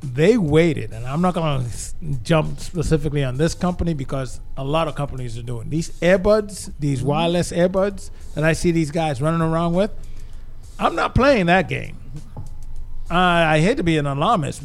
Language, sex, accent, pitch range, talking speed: English, male, American, 140-175 Hz, 180 wpm